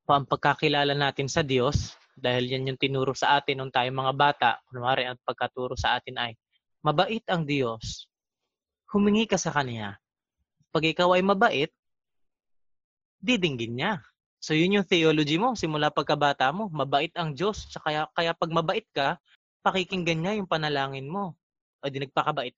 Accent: native